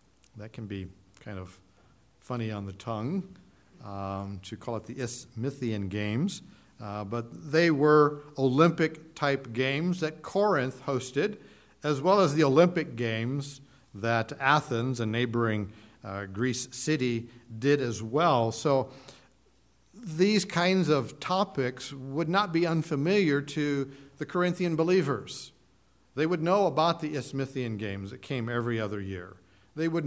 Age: 50-69